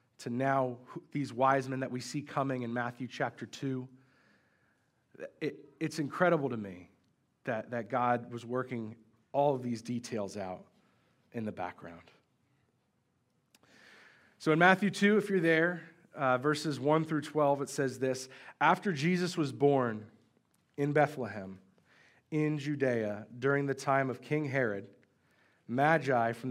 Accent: American